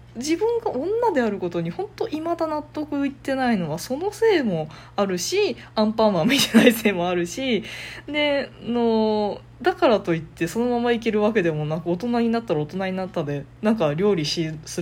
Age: 20-39